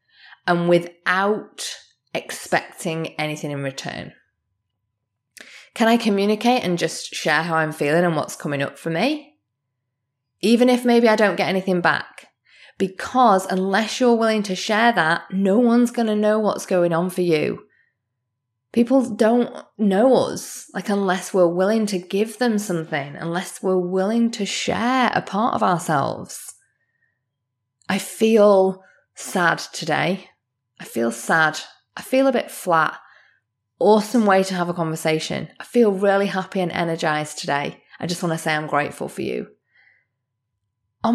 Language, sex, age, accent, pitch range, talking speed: English, female, 20-39, British, 160-220 Hz, 145 wpm